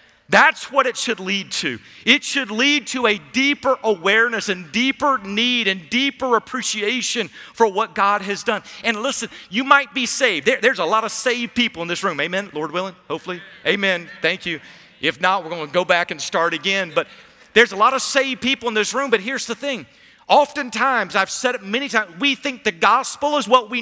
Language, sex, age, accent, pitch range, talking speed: English, male, 40-59, American, 195-255 Hz, 210 wpm